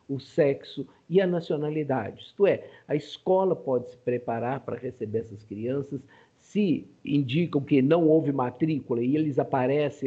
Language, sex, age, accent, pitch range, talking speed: Portuguese, male, 50-69, Brazilian, 125-160 Hz, 150 wpm